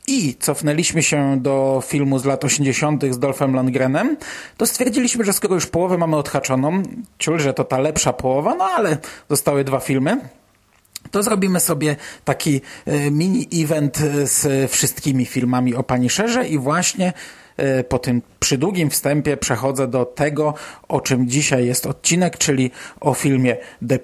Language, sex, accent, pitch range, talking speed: Polish, male, native, 130-155 Hz, 140 wpm